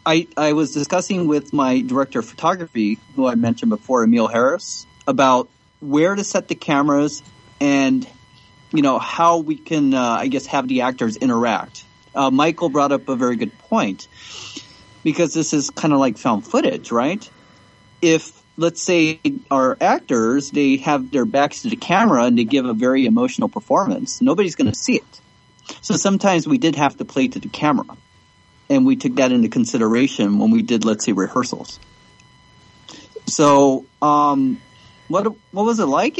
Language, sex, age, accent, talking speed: English, male, 30-49, American, 170 wpm